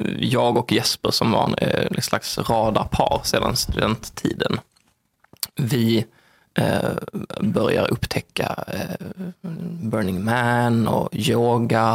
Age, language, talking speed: 20-39, Swedish, 100 wpm